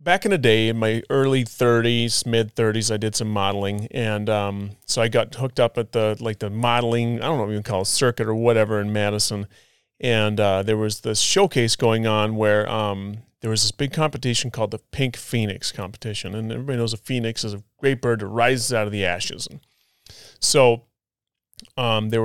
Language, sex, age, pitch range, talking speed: English, male, 30-49, 105-125 Hz, 210 wpm